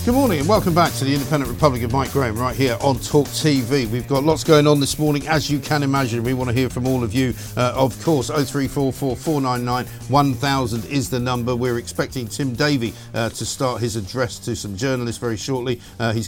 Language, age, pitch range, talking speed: English, 50-69, 110-135 Hz, 220 wpm